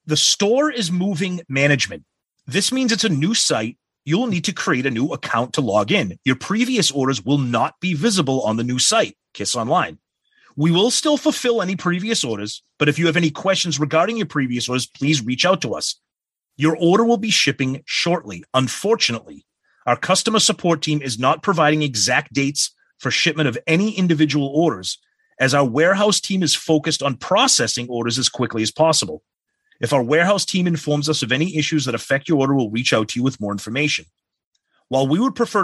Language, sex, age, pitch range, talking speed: English, male, 30-49, 140-205 Hz, 195 wpm